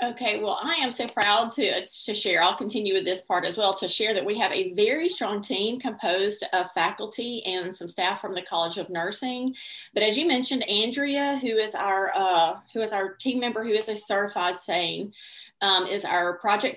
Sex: female